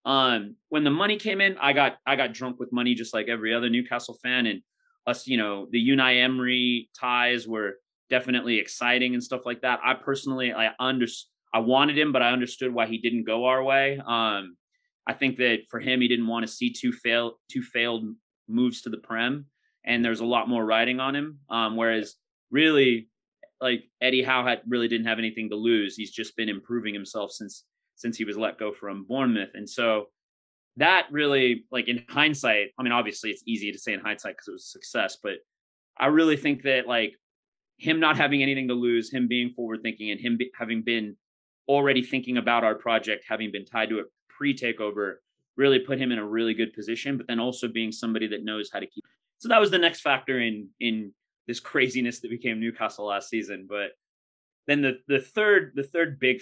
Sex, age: male, 30-49